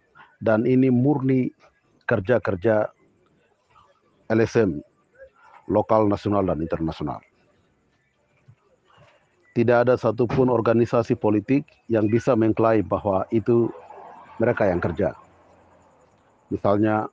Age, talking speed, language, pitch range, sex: 50-69, 80 wpm, Malay, 105-115 Hz, male